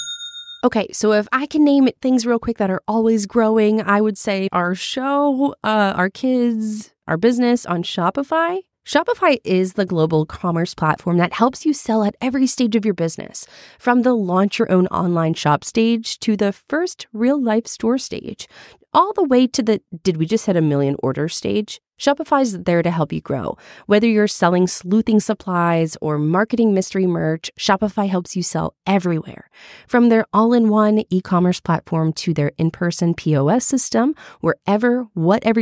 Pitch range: 170-235 Hz